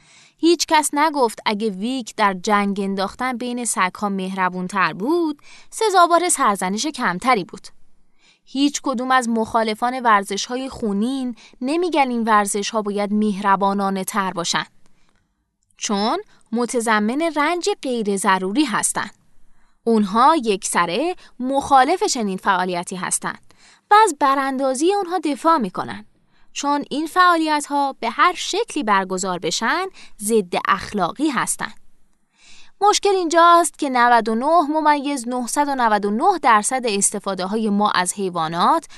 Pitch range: 200-295 Hz